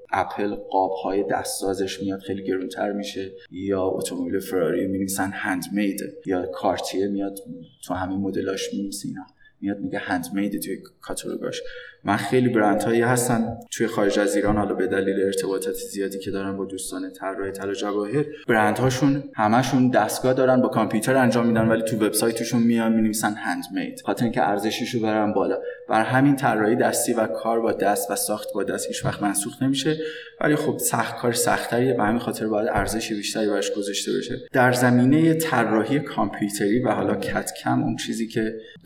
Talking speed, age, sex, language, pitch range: 165 wpm, 20-39, male, Persian, 100-125 Hz